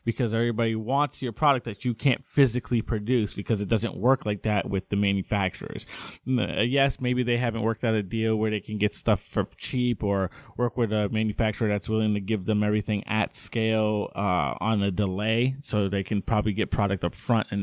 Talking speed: 205 wpm